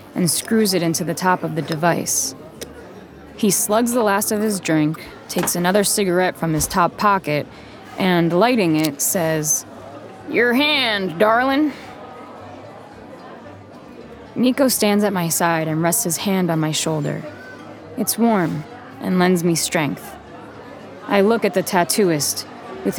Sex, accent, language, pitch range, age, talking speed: female, American, English, 165-205 Hz, 20-39, 140 wpm